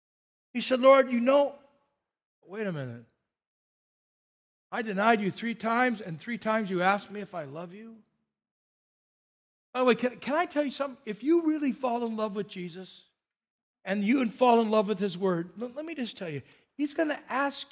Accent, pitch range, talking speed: American, 215-270 Hz, 195 wpm